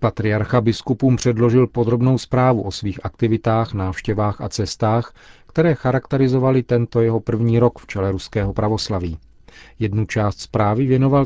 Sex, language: male, Czech